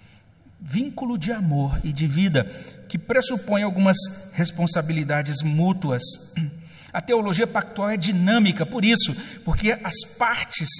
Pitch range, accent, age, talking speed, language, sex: 195-255 Hz, Brazilian, 60-79, 115 wpm, Portuguese, male